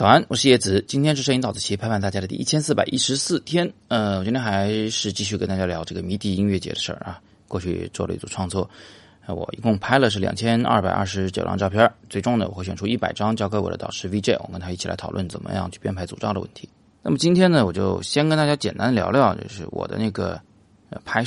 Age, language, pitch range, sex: 20-39, Chinese, 95-115 Hz, male